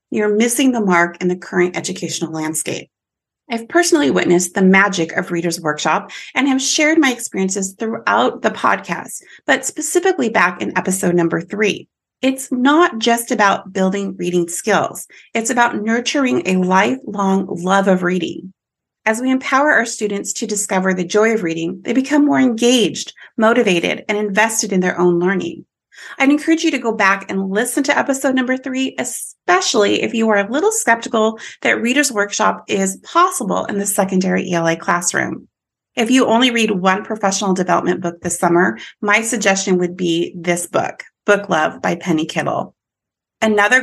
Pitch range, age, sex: 180-240 Hz, 30-49, female